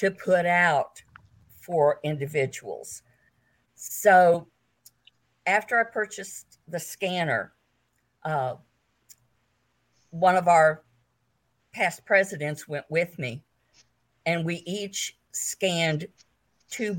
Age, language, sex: 50-69, English, female